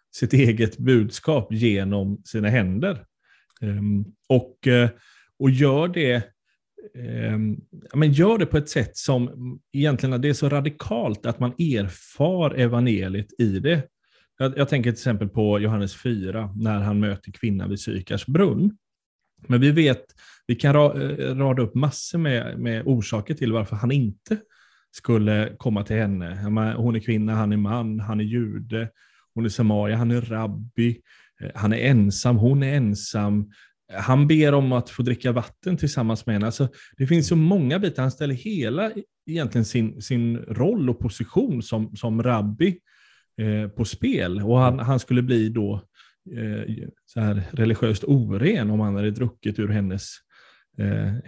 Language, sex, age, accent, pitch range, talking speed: Swedish, male, 30-49, native, 105-135 Hz, 155 wpm